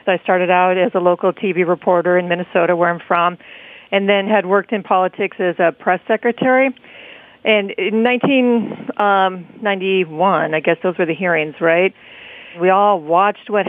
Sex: female